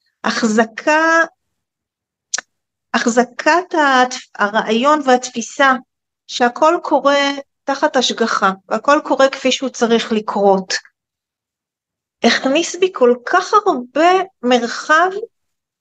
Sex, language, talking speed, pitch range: female, Hebrew, 75 wpm, 215-285 Hz